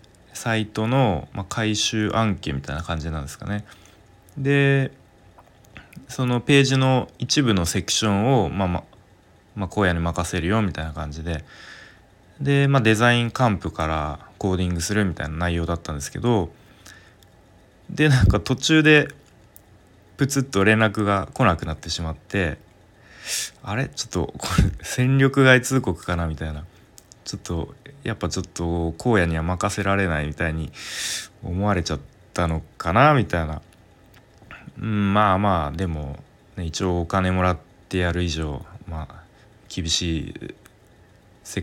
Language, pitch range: Japanese, 85-110 Hz